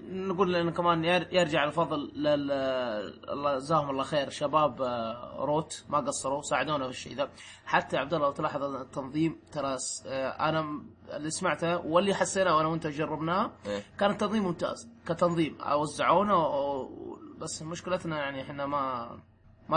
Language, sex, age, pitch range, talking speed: Arabic, male, 20-39, 145-180 Hz, 130 wpm